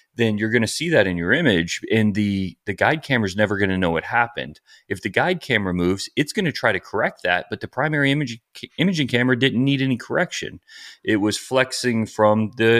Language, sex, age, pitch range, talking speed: English, male, 30-49, 95-130 Hz, 230 wpm